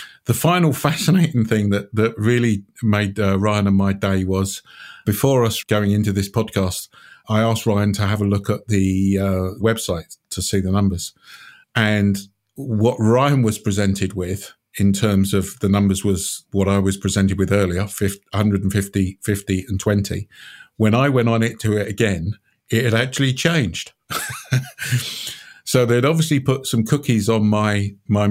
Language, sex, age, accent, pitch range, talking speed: English, male, 50-69, British, 100-125 Hz, 165 wpm